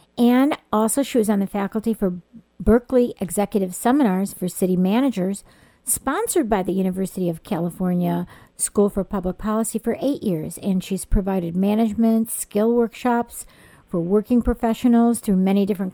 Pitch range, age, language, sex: 190-230 Hz, 50-69, English, female